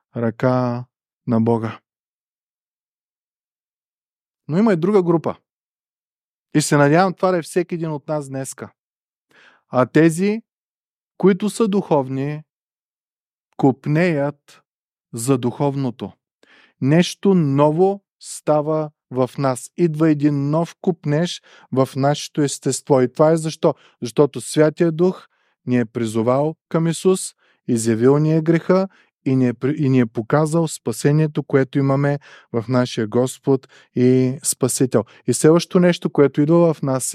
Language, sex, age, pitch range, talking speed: Bulgarian, male, 20-39, 130-165 Hz, 125 wpm